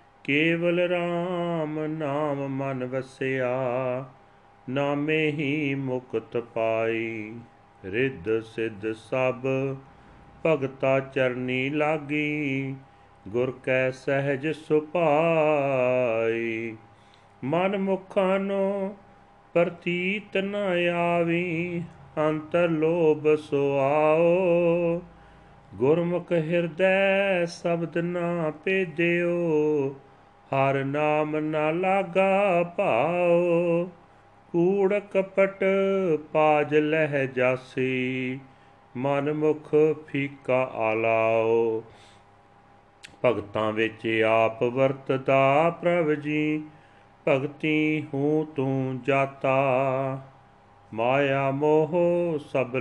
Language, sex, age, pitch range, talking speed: Punjabi, male, 40-59, 125-165 Hz, 70 wpm